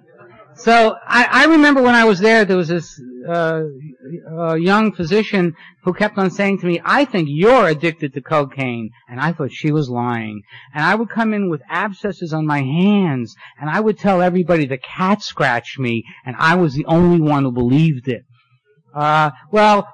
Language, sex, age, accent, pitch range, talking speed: English, male, 60-79, American, 140-195 Hz, 190 wpm